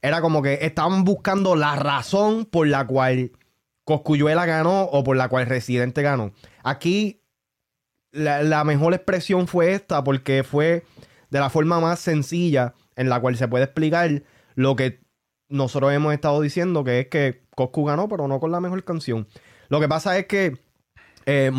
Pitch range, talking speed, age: 130-160 Hz, 170 wpm, 20-39